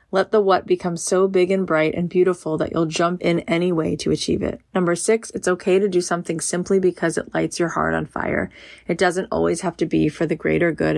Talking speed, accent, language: 240 wpm, American, English